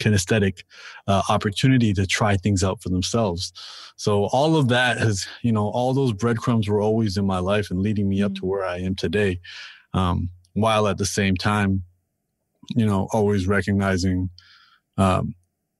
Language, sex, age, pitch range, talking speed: English, male, 30-49, 95-110 Hz, 165 wpm